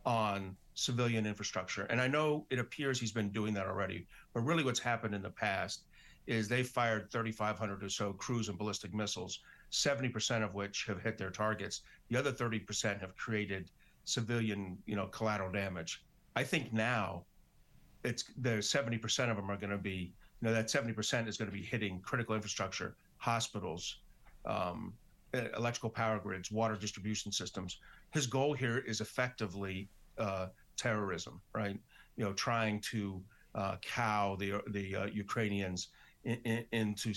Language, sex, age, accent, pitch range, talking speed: English, male, 50-69, American, 100-120 Hz, 160 wpm